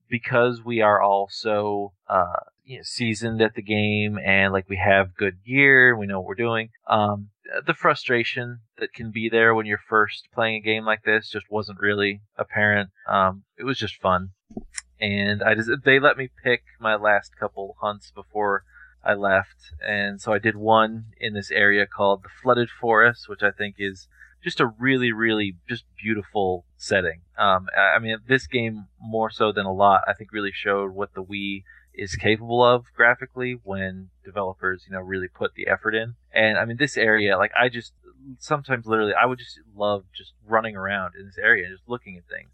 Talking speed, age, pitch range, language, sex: 195 wpm, 20-39, 100-115 Hz, English, male